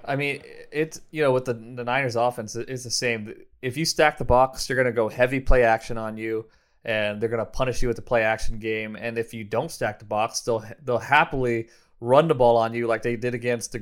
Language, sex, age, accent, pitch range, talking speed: English, male, 20-39, American, 120-140 Hz, 255 wpm